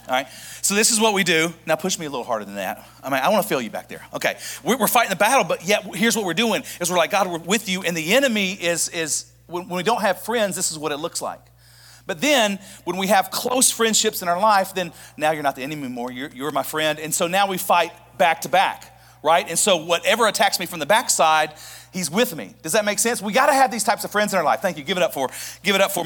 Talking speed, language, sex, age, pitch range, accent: 290 wpm, English, male, 40-59, 130-200 Hz, American